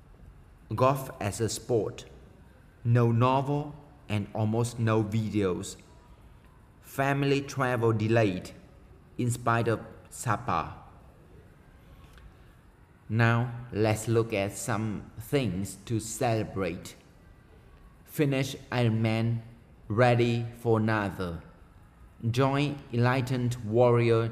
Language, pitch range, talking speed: Vietnamese, 110-130 Hz, 80 wpm